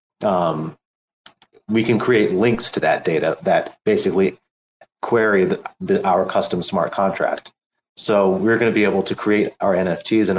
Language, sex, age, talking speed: English, male, 30-49, 160 wpm